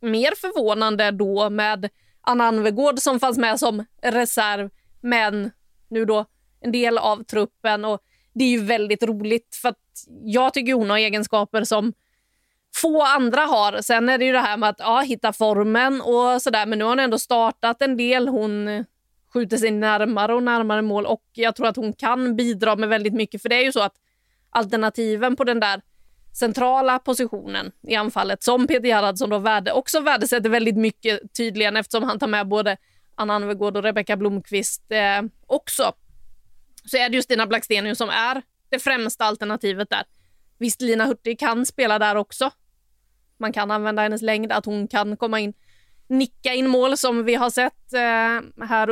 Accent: native